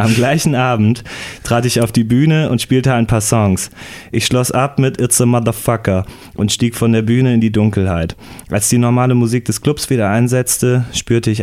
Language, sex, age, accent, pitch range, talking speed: German, male, 20-39, German, 100-120 Hz, 200 wpm